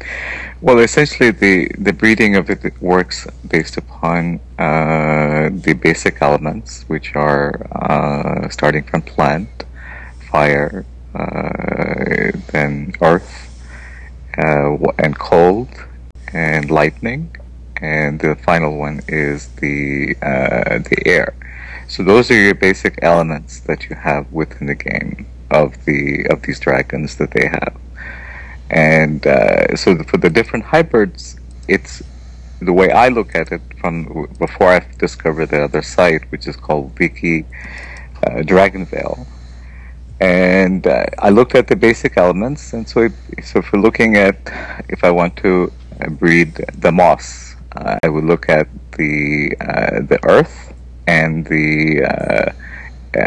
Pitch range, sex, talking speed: 65-85 Hz, male, 135 wpm